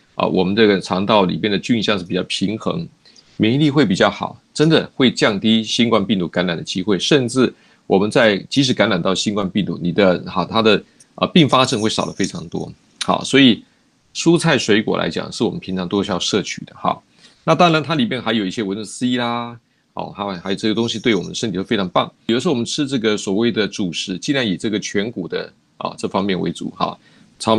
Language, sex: Chinese, male